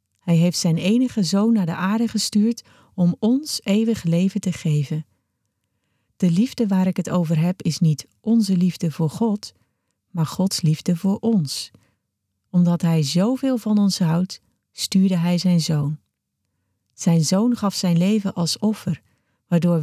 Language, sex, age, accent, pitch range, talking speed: Dutch, female, 40-59, Dutch, 155-200 Hz, 155 wpm